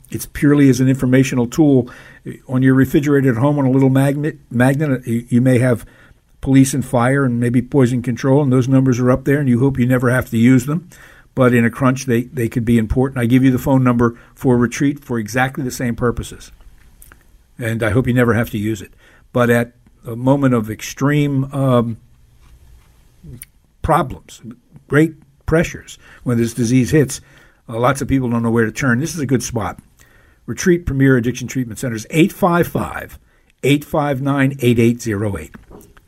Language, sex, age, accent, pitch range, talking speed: English, male, 60-79, American, 115-135 Hz, 175 wpm